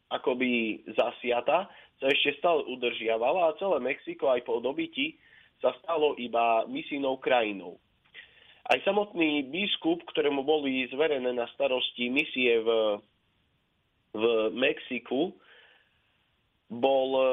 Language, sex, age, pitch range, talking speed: Slovak, male, 30-49, 120-150 Hz, 105 wpm